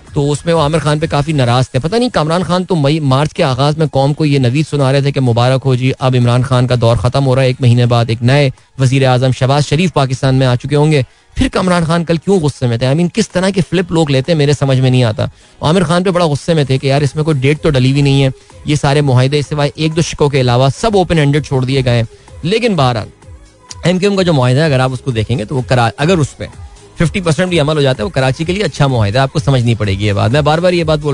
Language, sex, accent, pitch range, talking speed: Hindi, male, native, 125-150 Hz, 285 wpm